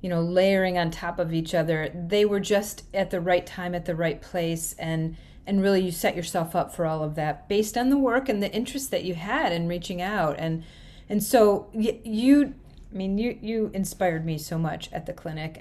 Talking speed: 225 wpm